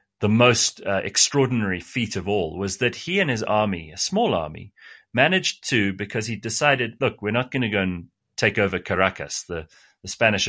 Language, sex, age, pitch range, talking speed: English, male, 30-49, 100-135 Hz, 195 wpm